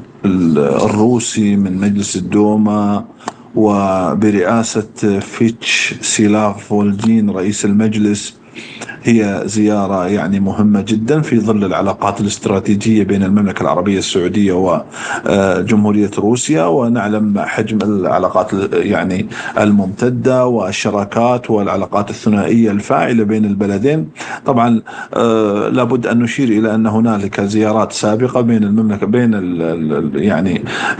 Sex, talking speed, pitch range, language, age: male, 95 wpm, 100-115 Hz, Arabic, 50-69